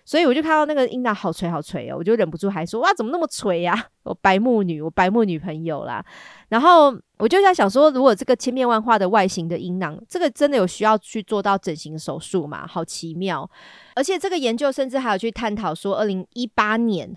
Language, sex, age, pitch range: Chinese, female, 30-49, 180-245 Hz